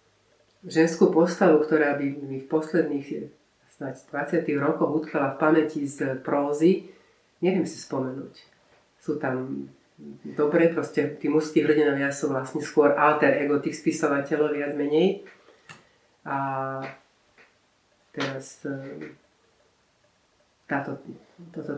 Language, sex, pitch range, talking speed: Slovak, female, 135-155 Hz, 100 wpm